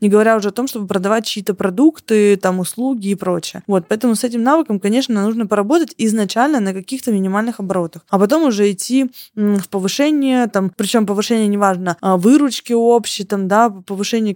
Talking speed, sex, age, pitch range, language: 165 wpm, female, 20-39, 195-240 Hz, Russian